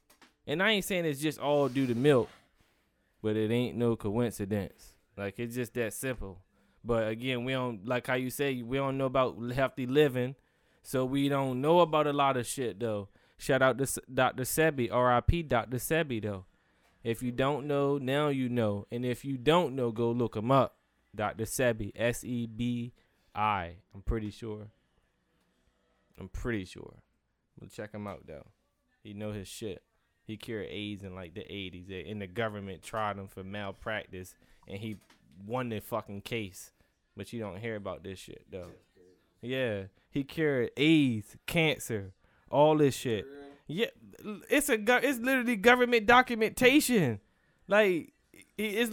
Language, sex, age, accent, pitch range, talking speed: English, male, 20-39, American, 105-150 Hz, 165 wpm